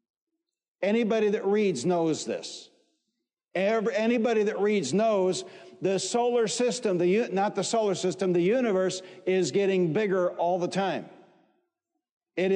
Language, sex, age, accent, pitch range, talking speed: English, male, 50-69, American, 180-215 Hz, 120 wpm